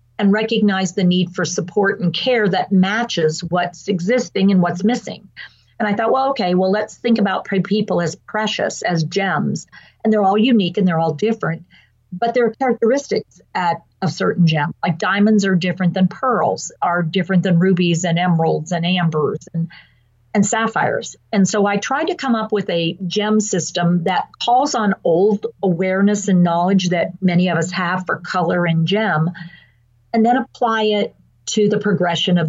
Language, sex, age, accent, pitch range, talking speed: English, female, 50-69, American, 170-210 Hz, 180 wpm